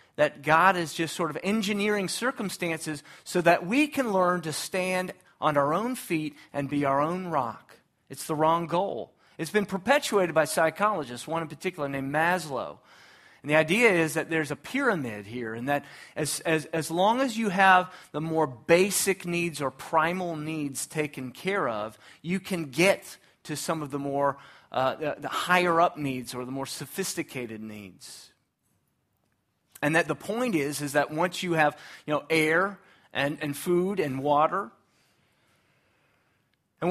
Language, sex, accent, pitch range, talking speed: English, male, American, 145-185 Hz, 170 wpm